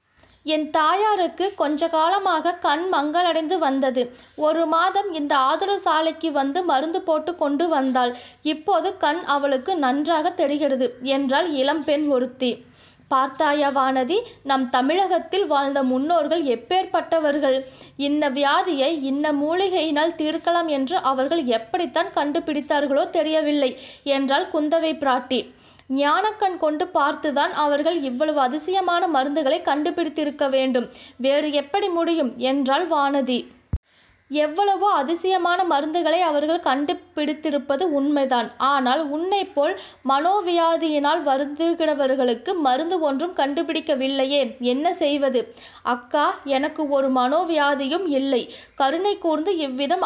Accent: native